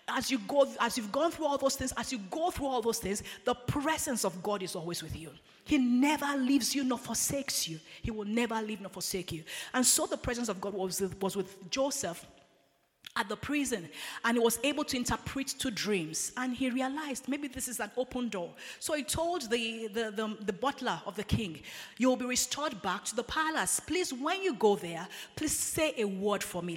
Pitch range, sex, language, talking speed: 200-275 Hz, female, English, 220 wpm